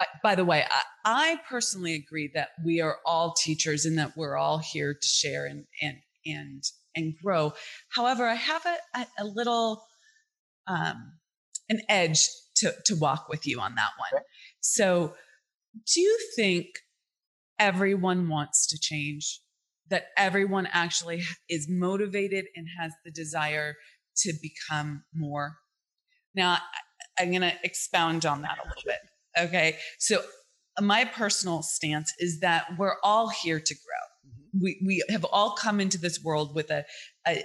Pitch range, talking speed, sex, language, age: 160-220 Hz, 155 wpm, female, English, 30-49